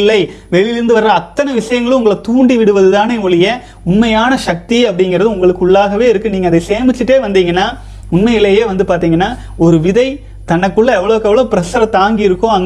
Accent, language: native, Tamil